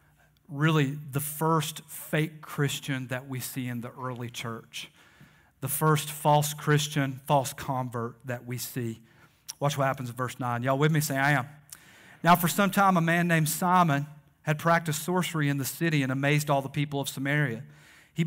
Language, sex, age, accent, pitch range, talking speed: English, male, 40-59, American, 135-155 Hz, 180 wpm